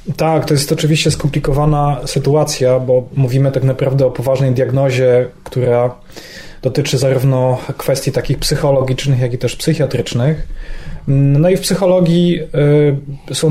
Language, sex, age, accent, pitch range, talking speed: Polish, male, 20-39, native, 130-145 Hz, 125 wpm